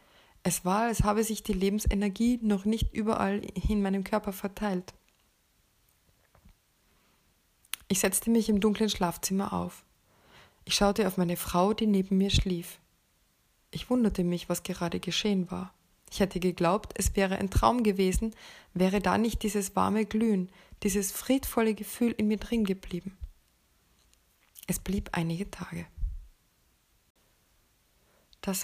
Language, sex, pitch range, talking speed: German, female, 185-210 Hz, 130 wpm